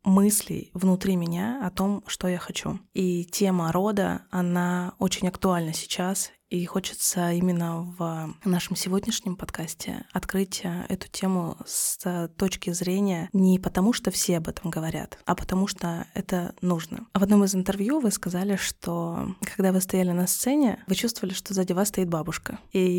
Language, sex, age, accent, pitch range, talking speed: Russian, female, 20-39, native, 180-200 Hz, 155 wpm